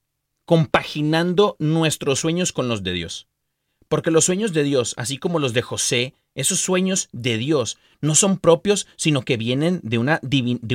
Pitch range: 115-160 Hz